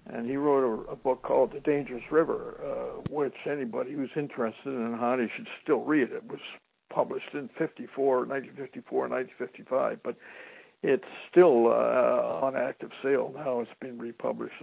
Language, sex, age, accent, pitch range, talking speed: English, male, 60-79, American, 125-150 Hz, 160 wpm